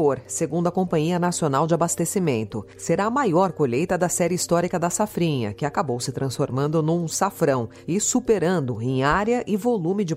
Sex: female